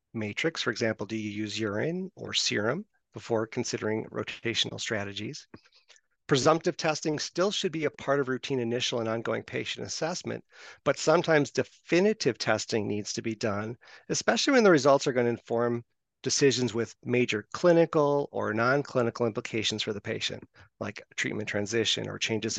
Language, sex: English, male